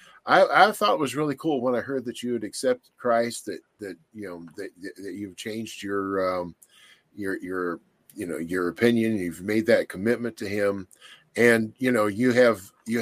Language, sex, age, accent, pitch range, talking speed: English, male, 50-69, American, 100-125 Hz, 200 wpm